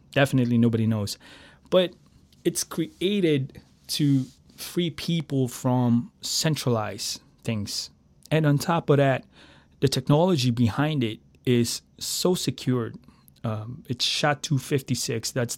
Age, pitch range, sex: 20-39, 115-145 Hz, male